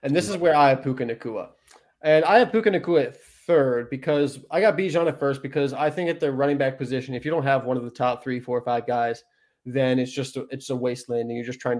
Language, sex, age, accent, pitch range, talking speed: English, male, 20-39, American, 130-150 Hz, 265 wpm